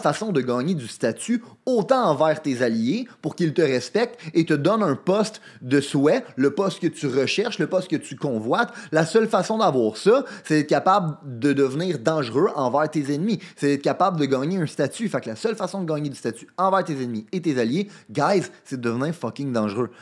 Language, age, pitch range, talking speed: French, 30-49, 135-200 Hz, 215 wpm